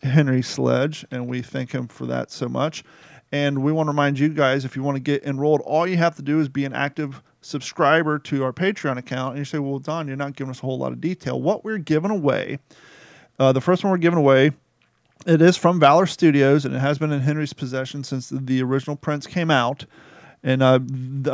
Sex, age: male, 40-59